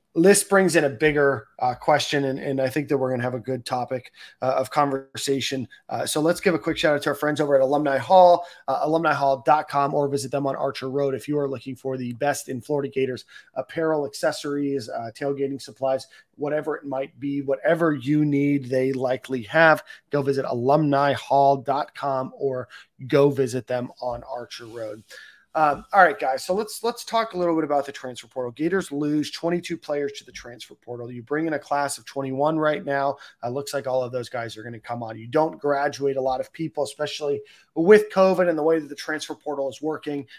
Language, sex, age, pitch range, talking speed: English, male, 30-49, 130-150 Hz, 215 wpm